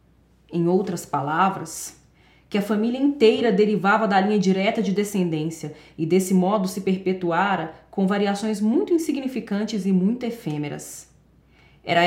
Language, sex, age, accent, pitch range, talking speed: Portuguese, female, 20-39, Brazilian, 175-220 Hz, 130 wpm